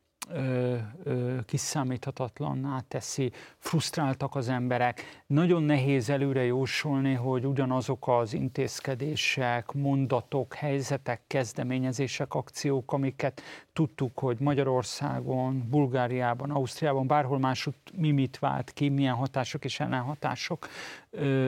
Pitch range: 130-145 Hz